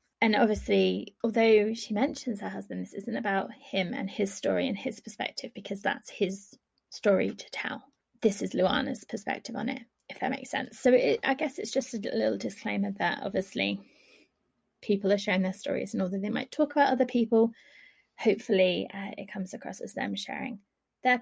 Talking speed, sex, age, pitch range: 185 wpm, female, 20-39, 195-255 Hz